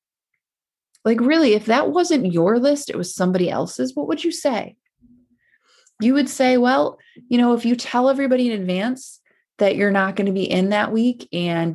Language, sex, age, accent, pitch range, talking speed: English, female, 20-39, American, 185-235 Hz, 190 wpm